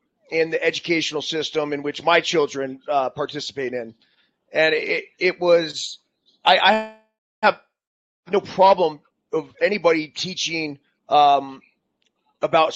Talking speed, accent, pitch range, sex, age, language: 120 wpm, American, 145-185 Hz, male, 30-49, English